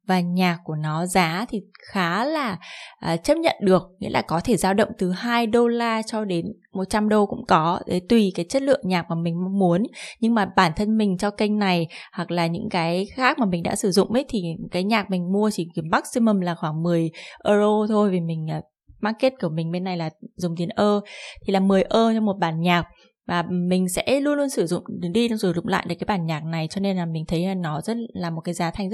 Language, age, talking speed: Vietnamese, 20-39, 240 wpm